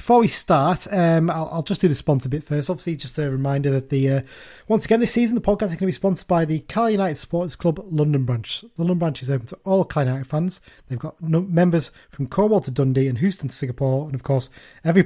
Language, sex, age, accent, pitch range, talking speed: English, male, 30-49, British, 130-170 Hz, 255 wpm